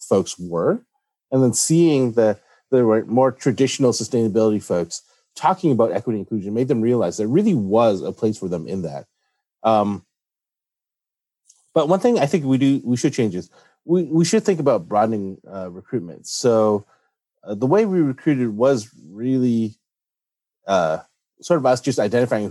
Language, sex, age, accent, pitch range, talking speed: English, male, 30-49, American, 105-135 Hz, 165 wpm